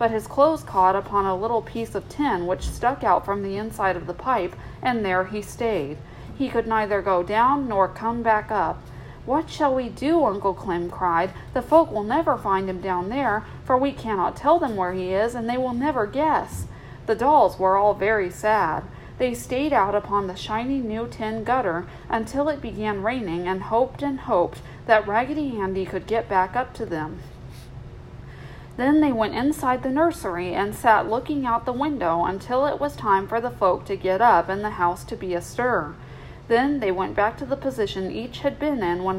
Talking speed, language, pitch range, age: 200 wpm, English, 190-255 Hz, 40-59